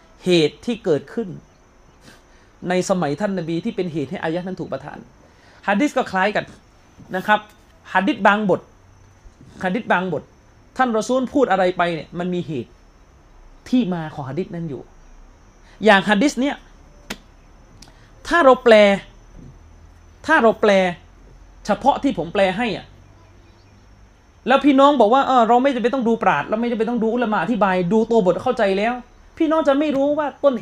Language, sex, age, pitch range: Thai, male, 30-49, 155-245 Hz